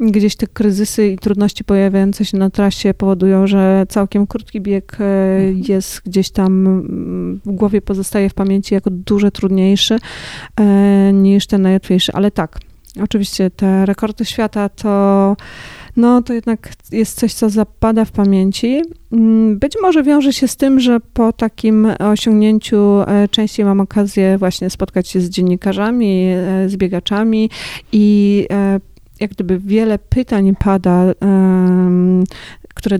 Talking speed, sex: 125 wpm, female